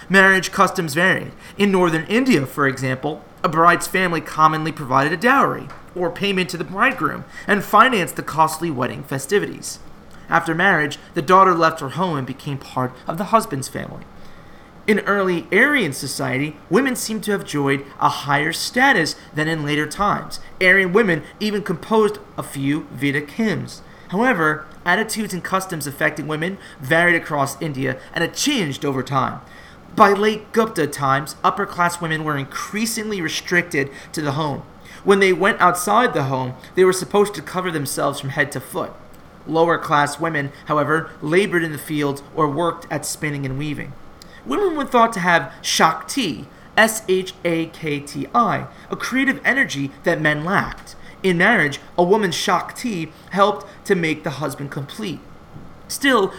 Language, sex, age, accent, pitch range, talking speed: English, male, 30-49, American, 150-195 Hz, 155 wpm